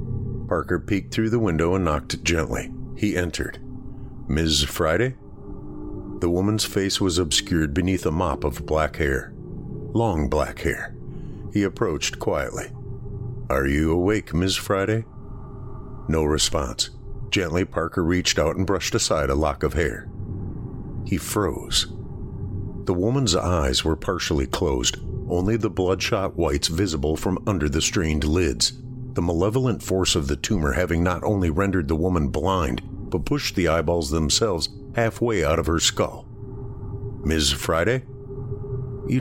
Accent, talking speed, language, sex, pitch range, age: American, 140 wpm, English, male, 85-125 Hz, 50-69